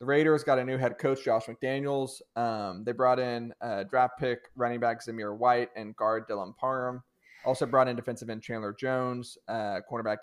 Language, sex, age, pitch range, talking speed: English, male, 20-39, 115-130 Hz, 195 wpm